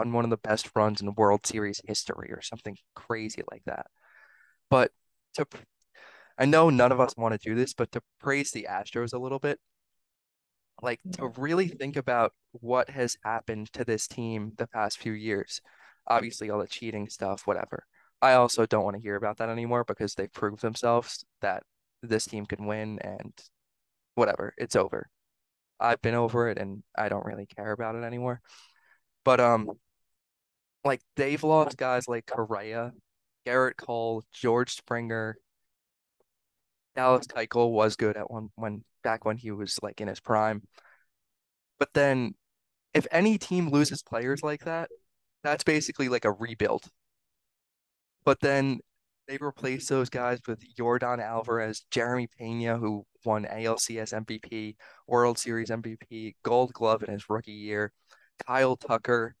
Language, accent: English, American